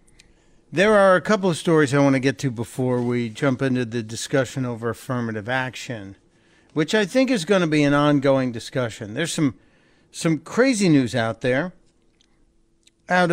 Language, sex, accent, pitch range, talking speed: English, male, American, 140-195 Hz, 170 wpm